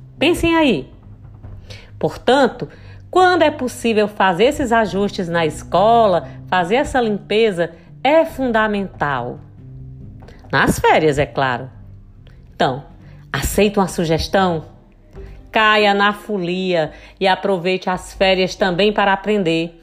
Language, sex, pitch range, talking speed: Portuguese, female, 170-225 Hz, 105 wpm